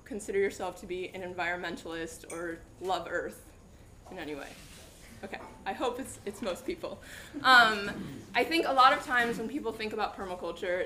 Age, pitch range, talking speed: 20-39, 185-235 Hz, 170 wpm